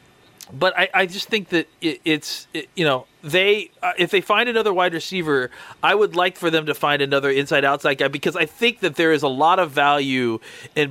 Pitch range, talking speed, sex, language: 140-180 Hz, 225 wpm, male, English